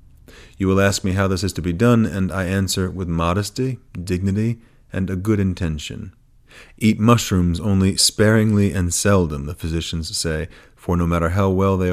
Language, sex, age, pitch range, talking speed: English, male, 30-49, 90-110 Hz, 175 wpm